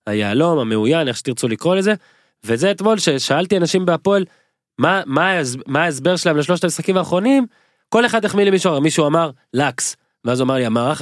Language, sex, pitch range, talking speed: Hebrew, male, 125-165 Hz, 170 wpm